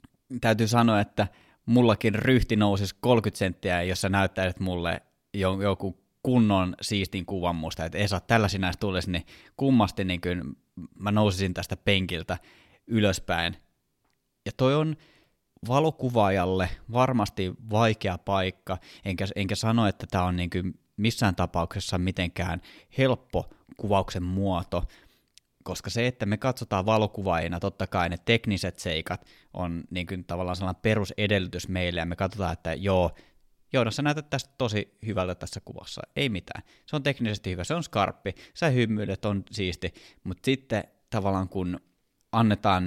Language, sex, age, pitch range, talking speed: Finnish, male, 20-39, 90-110 Hz, 140 wpm